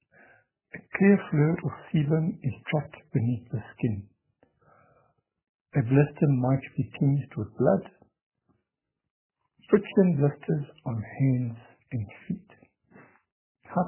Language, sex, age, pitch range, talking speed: English, male, 60-79, 120-160 Hz, 100 wpm